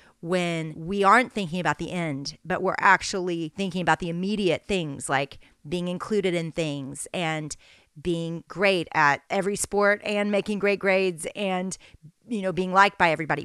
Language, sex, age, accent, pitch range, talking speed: English, female, 40-59, American, 170-210 Hz, 165 wpm